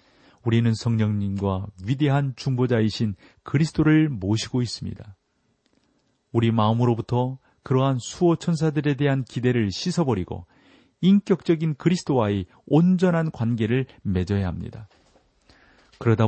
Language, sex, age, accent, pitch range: Korean, male, 40-59, native, 105-135 Hz